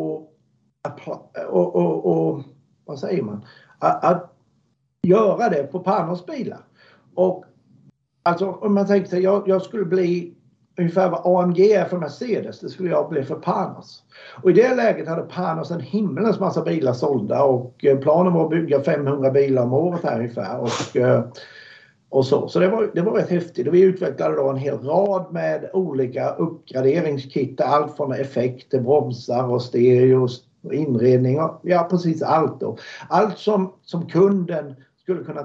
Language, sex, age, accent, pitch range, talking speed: Swedish, male, 60-79, native, 135-185 Hz, 160 wpm